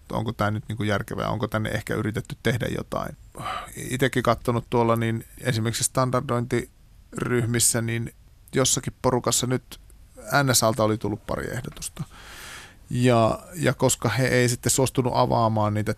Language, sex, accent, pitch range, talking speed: Finnish, male, native, 110-130 Hz, 130 wpm